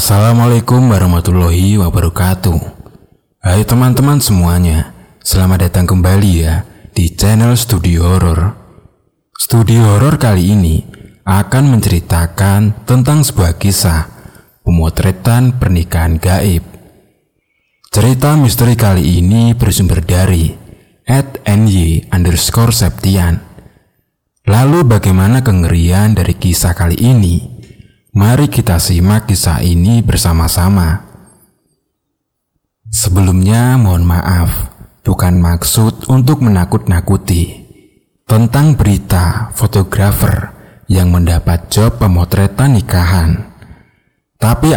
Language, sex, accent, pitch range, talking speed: Indonesian, male, native, 90-115 Hz, 85 wpm